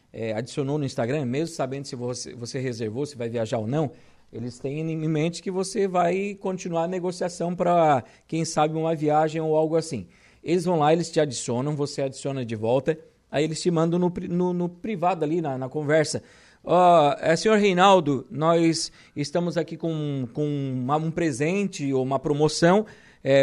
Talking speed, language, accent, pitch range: 180 wpm, Portuguese, Brazilian, 145-185 Hz